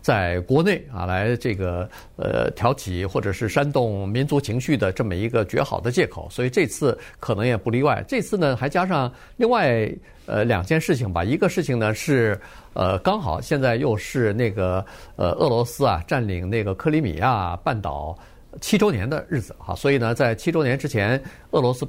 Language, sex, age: Chinese, male, 50-69